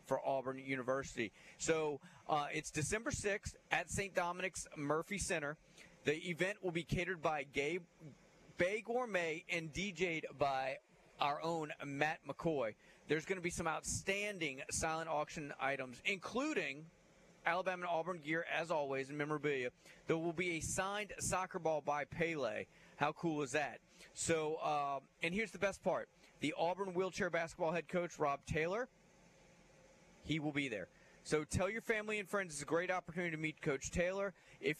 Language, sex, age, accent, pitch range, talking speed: English, male, 30-49, American, 150-180 Hz, 160 wpm